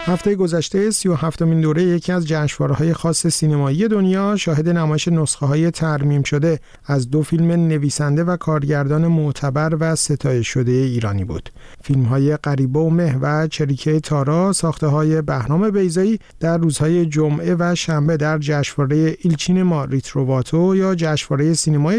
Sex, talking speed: male, 145 wpm